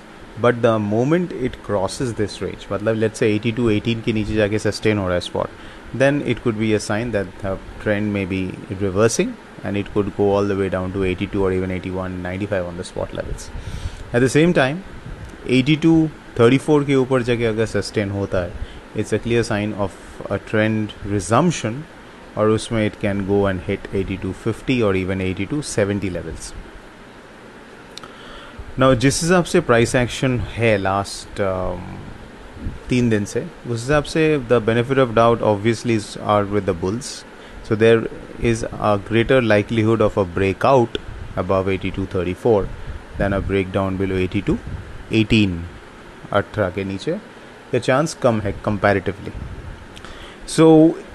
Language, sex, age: English, male, 30-49